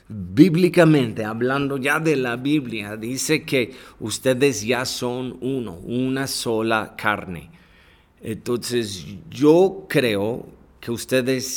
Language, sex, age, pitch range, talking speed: Spanish, male, 30-49, 105-130 Hz, 105 wpm